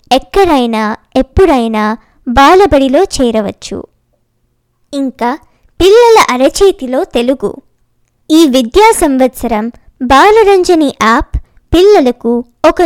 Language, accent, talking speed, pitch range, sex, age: Telugu, native, 70 wpm, 240-345 Hz, male, 20-39